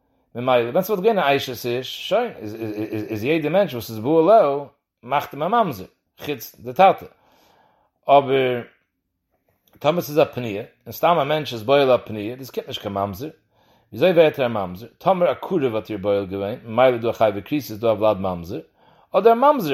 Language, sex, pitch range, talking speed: English, male, 120-185 Hz, 120 wpm